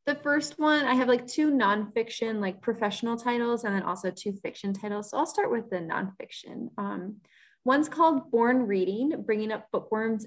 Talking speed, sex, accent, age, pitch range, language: 180 wpm, female, American, 20-39, 195-255 Hz, English